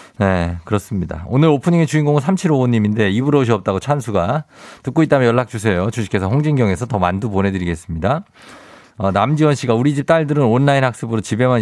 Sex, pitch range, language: male, 95-135 Hz, Korean